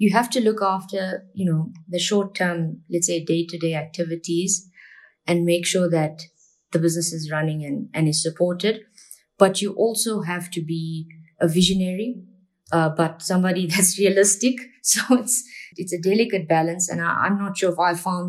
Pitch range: 160-185 Hz